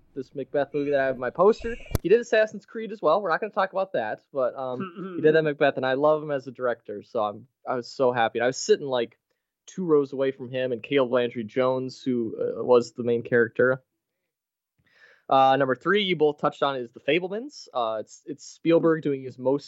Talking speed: 235 wpm